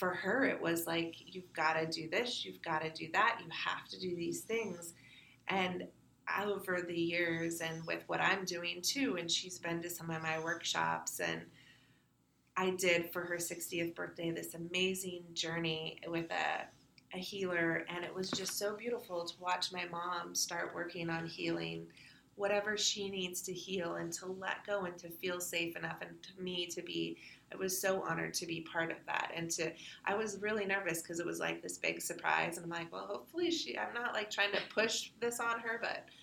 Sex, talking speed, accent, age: female, 205 wpm, American, 30-49